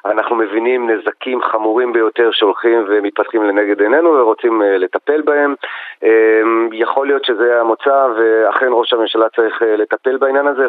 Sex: male